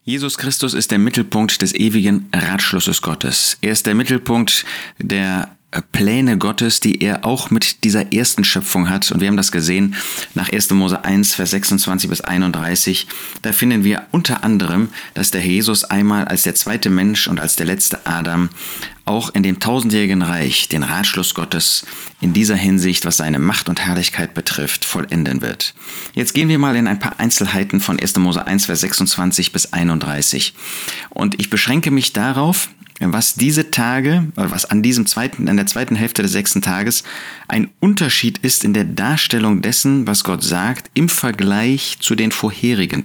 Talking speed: 175 wpm